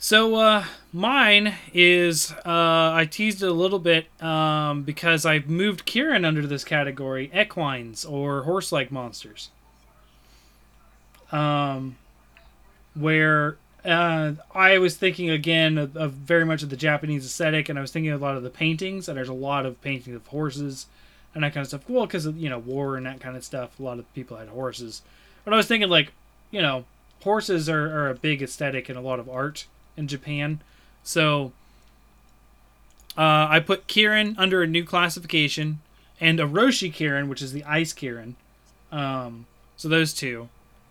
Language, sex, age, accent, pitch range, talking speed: English, male, 20-39, American, 140-170 Hz, 175 wpm